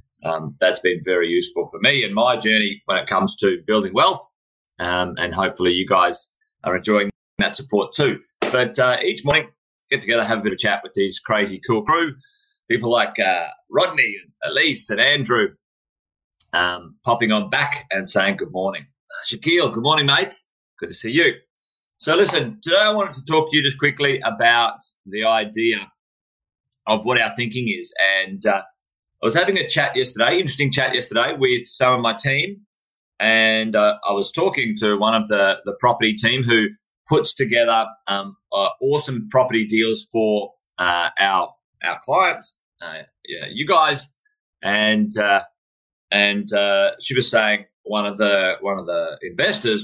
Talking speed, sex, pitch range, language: 170 wpm, male, 105-145 Hz, English